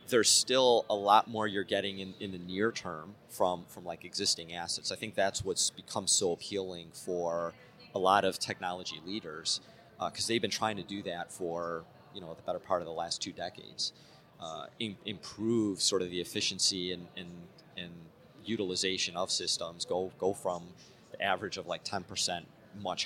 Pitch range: 90-105 Hz